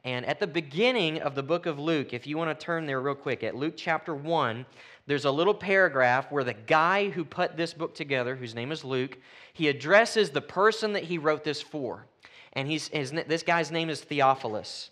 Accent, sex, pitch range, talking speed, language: American, male, 120-160 Hz, 215 wpm, English